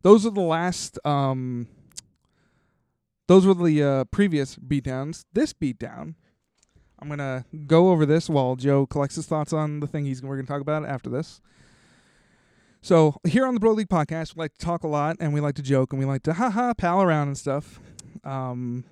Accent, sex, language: American, male, English